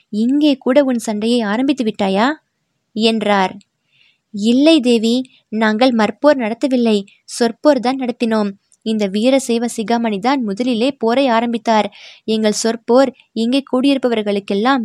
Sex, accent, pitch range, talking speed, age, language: female, native, 205-245 Hz, 100 wpm, 20-39, Tamil